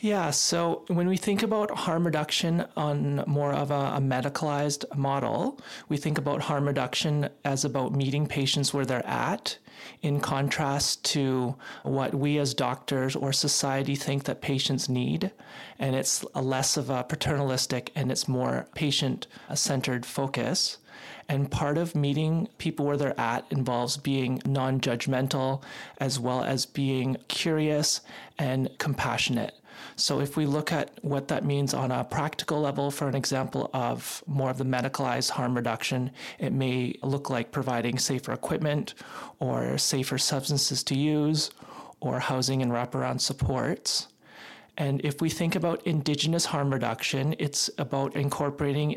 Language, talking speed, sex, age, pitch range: English, 145 wpm, male, 30-49, 130-150 Hz